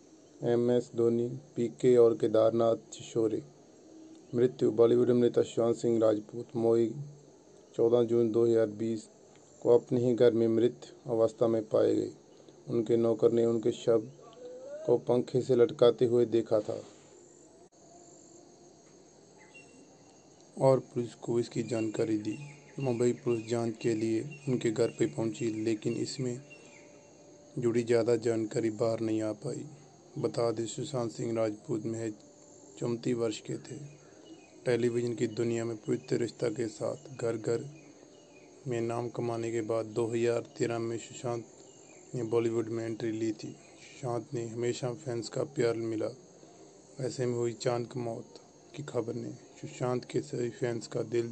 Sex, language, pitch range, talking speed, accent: male, Hindi, 115-125 Hz, 145 wpm, native